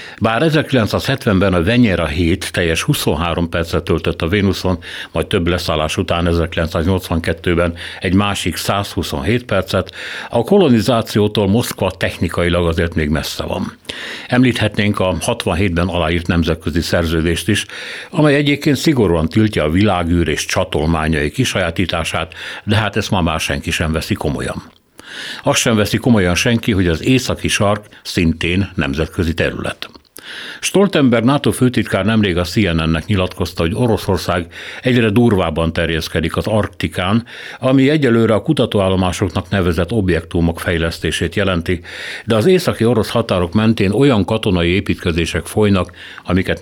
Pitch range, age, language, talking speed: 85-110 Hz, 60-79, Hungarian, 125 wpm